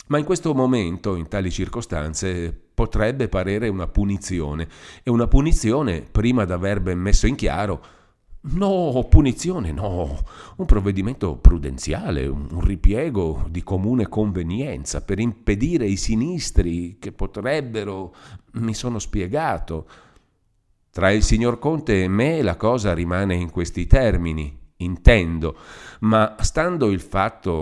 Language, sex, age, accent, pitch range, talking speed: Italian, male, 40-59, native, 80-105 Hz, 125 wpm